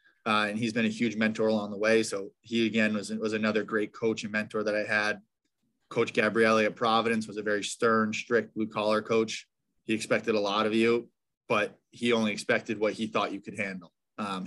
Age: 20-39